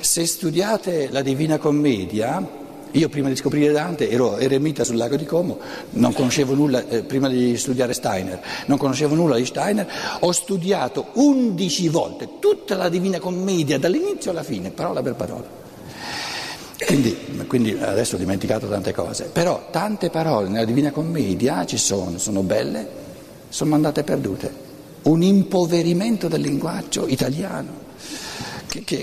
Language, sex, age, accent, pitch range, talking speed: Italian, male, 60-79, native, 130-175 Hz, 145 wpm